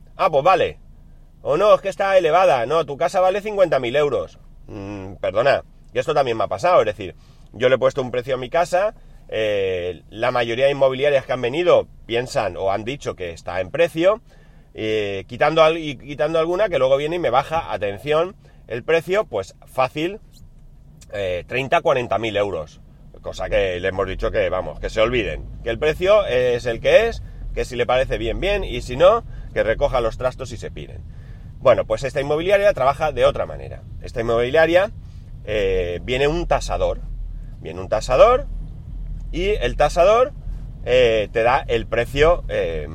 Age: 30-49